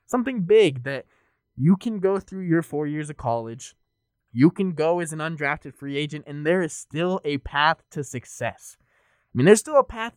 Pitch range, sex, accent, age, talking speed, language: 140-185 Hz, male, American, 20-39, 200 wpm, English